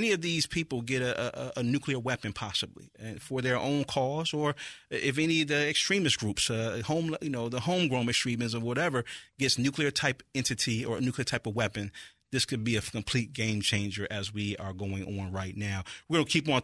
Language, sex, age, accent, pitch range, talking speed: English, male, 30-49, American, 110-135 Hz, 215 wpm